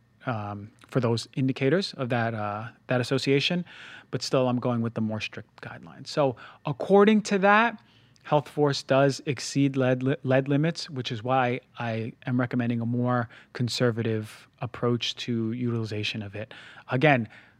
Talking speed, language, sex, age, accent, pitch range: 150 wpm, English, male, 30-49, American, 120-145 Hz